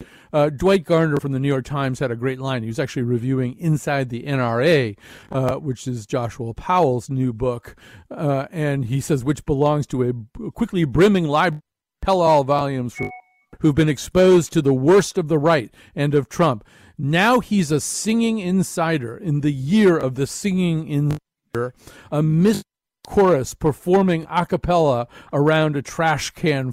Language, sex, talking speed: English, male, 165 wpm